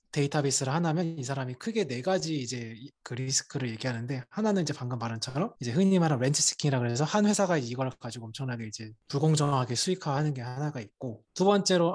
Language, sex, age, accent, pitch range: Korean, male, 20-39, native, 125-165 Hz